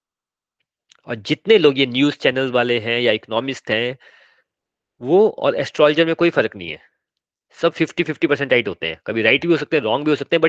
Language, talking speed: Hindi, 210 wpm